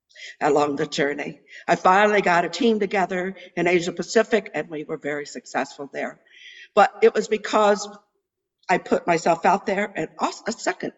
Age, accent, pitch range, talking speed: 60-79, American, 155-215 Hz, 170 wpm